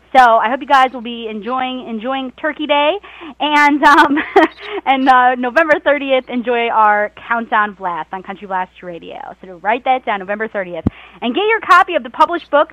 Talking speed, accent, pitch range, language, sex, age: 190 wpm, American, 220-305 Hz, English, female, 20-39